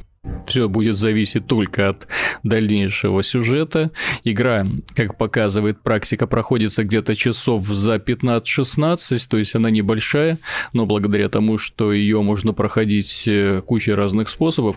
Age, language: 20-39, Russian